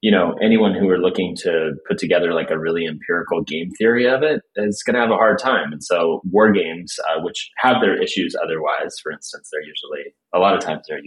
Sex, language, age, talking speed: male, English, 30-49, 235 wpm